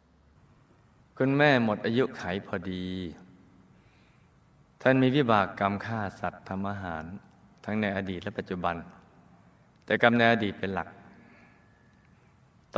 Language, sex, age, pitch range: Thai, male, 20-39, 90-110 Hz